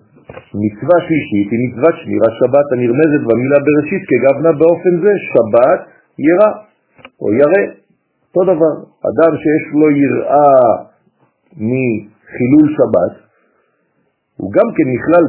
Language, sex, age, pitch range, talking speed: French, male, 50-69, 115-160 Hz, 105 wpm